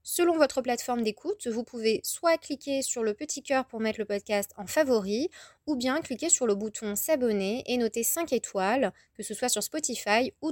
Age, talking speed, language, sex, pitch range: 20-39, 200 wpm, French, female, 210-275 Hz